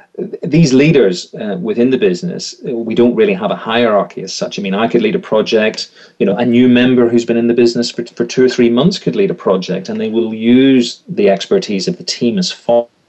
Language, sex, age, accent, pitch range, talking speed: English, male, 30-49, British, 120-190 Hz, 235 wpm